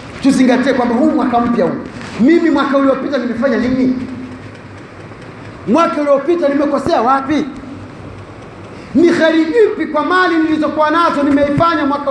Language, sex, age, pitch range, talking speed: Indonesian, male, 40-59, 245-305 Hz, 115 wpm